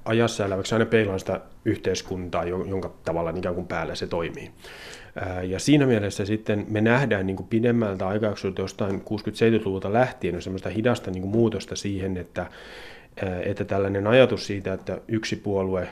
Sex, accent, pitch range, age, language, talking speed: male, native, 95-115 Hz, 30-49, Finnish, 135 wpm